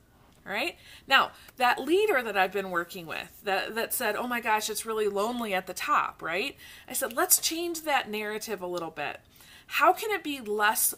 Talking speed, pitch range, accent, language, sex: 195 wpm, 195-260 Hz, American, English, female